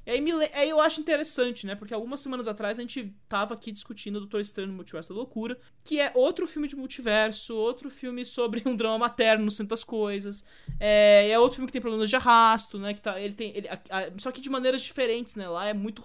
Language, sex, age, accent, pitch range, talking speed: English, male, 20-39, Brazilian, 205-280 Hz, 240 wpm